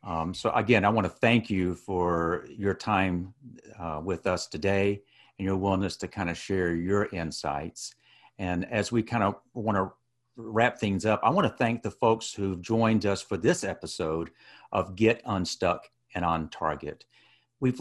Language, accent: English, American